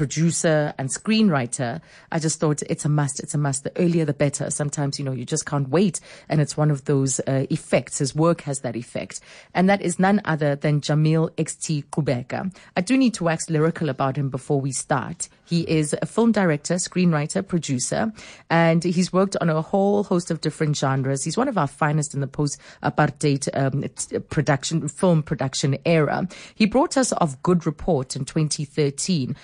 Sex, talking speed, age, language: female, 190 wpm, 30-49, English